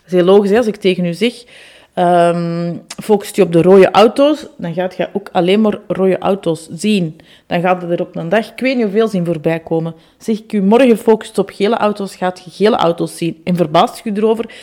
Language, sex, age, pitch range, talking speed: Dutch, female, 30-49, 180-225 Hz, 235 wpm